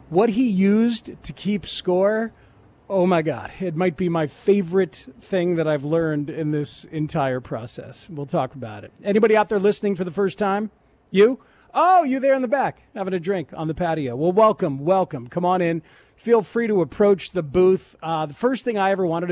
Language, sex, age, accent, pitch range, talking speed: English, male, 40-59, American, 155-200 Hz, 205 wpm